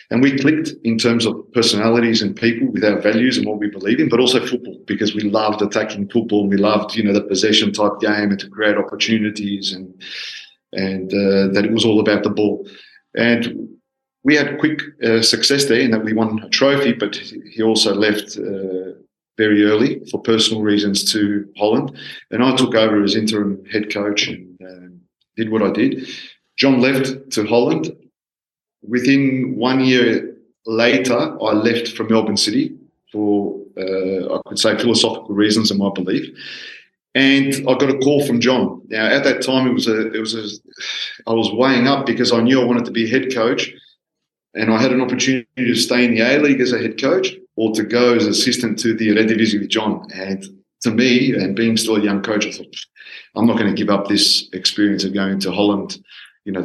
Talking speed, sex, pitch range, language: 205 wpm, male, 105-125 Hz, Hebrew